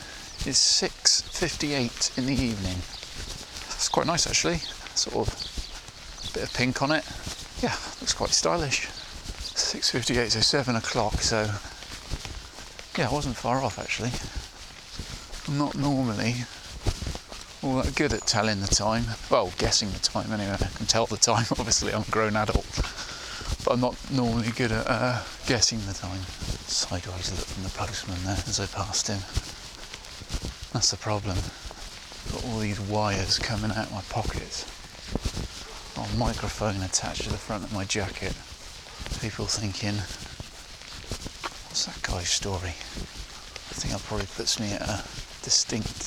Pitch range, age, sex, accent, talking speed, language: 95-115 Hz, 30-49, male, British, 150 wpm, English